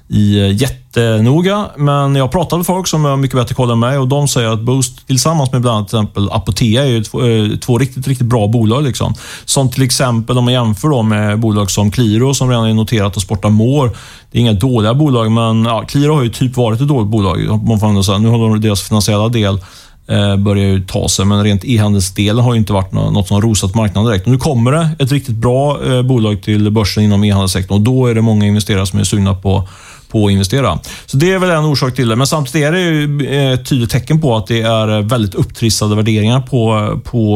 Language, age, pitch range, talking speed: Swedish, 30-49, 100-130 Hz, 225 wpm